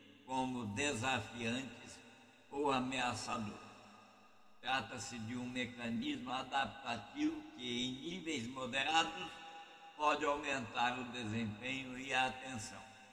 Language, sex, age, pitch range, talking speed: Portuguese, male, 60-79, 120-165 Hz, 90 wpm